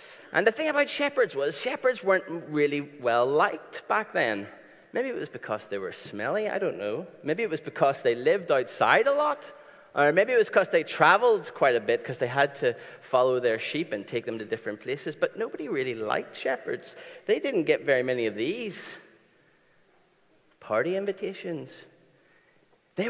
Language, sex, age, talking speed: English, male, 30-49, 180 wpm